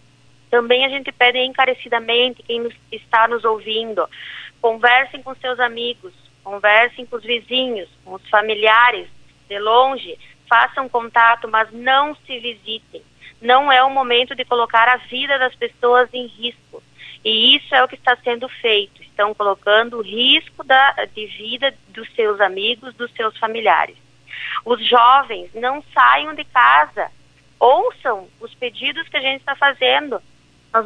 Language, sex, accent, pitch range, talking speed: Portuguese, female, Brazilian, 225-270 Hz, 145 wpm